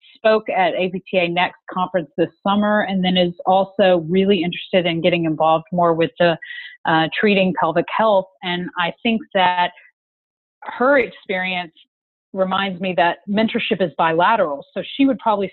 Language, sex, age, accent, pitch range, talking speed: English, female, 40-59, American, 175-200 Hz, 150 wpm